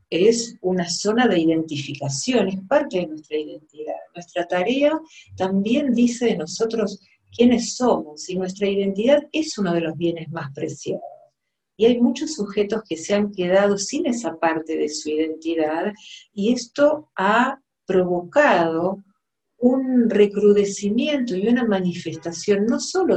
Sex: female